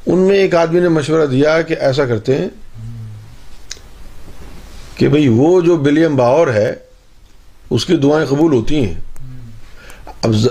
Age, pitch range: 50-69, 115-170 Hz